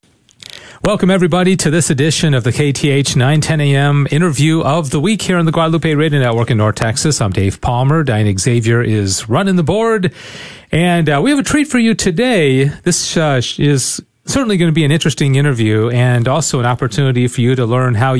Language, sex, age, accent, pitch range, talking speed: English, male, 40-59, American, 125-160 Hz, 200 wpm